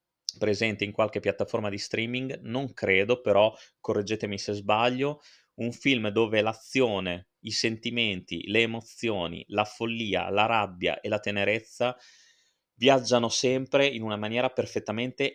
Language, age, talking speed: Italian, 30-49, 130 wpm